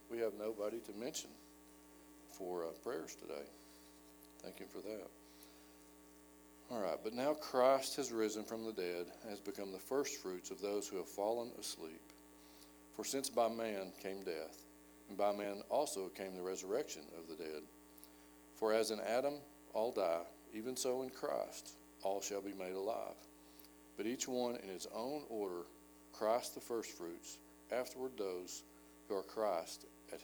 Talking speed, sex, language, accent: 160 wpm, male, English, American